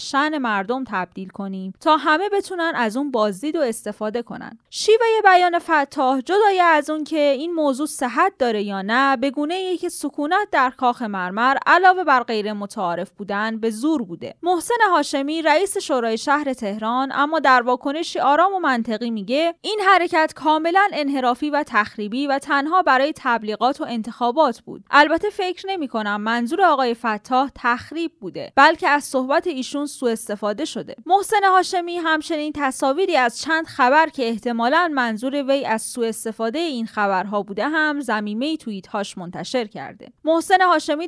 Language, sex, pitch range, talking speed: Persian, female, 230-315 Hz, 155 wpm